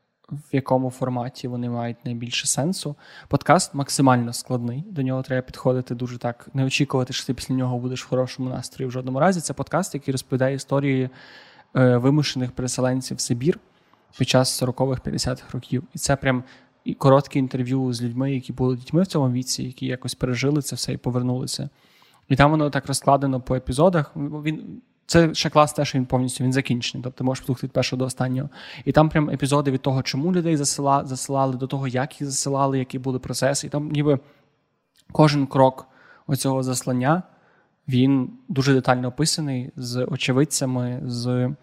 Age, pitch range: 20-39, 130-145 Hz